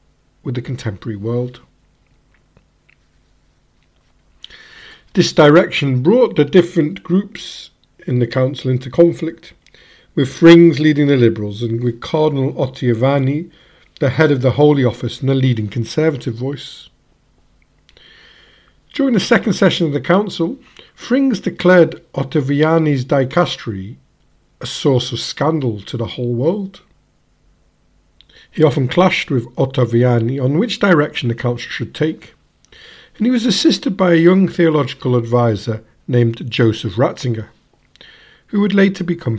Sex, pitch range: male, 120-175 Hz